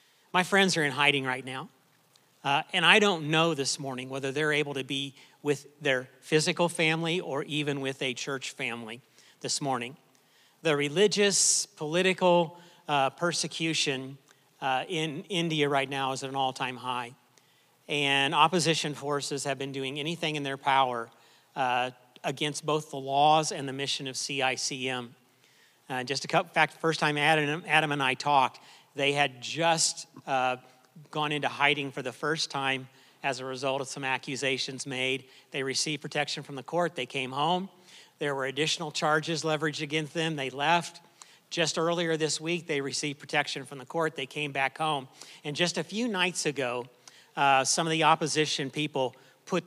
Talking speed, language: 175 wpm, English